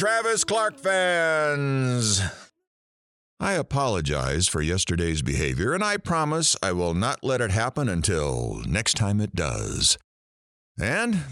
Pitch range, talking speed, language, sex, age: 85-145 Hz, 120 wpm, English, male, 50-69